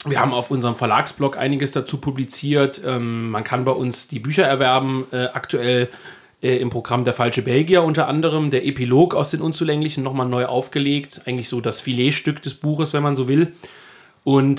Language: German